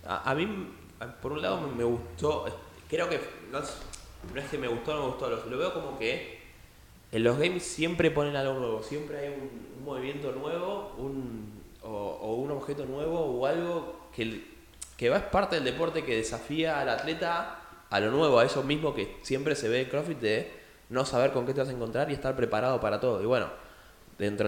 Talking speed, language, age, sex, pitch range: 205 wpm, Spanish, 20-39, male, 110-145 Hz